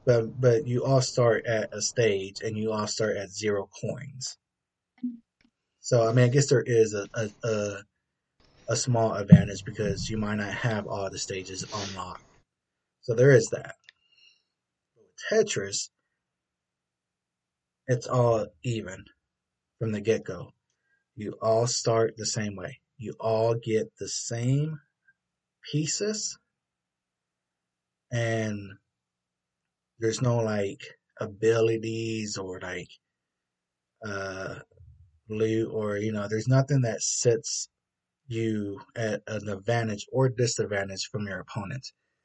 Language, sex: English, male